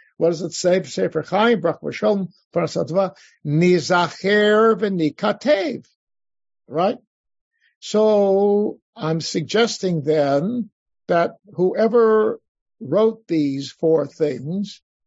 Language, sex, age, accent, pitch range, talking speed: English, male, 60-79, American, 155-205 Hz, 70 wpm